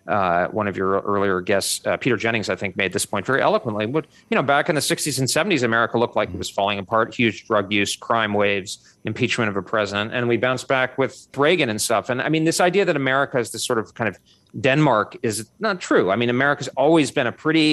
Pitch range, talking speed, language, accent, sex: 110-155 Hz, 245 wpm, English, American, male